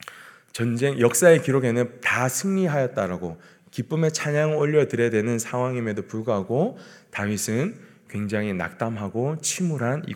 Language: Korean